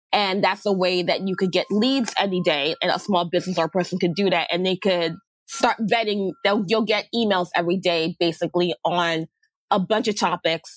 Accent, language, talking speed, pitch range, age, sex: American, English, 205 wpm, 175-215 Hz, 20-39, female